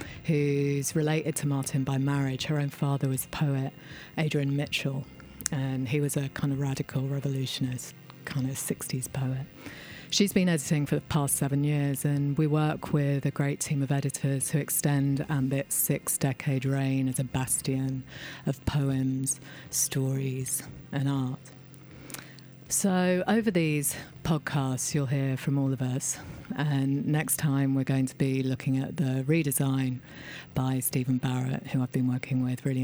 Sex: female